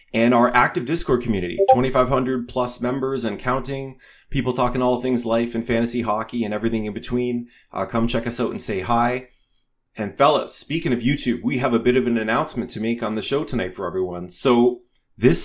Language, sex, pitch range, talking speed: English, male, 115-130 Hz, 200 wpm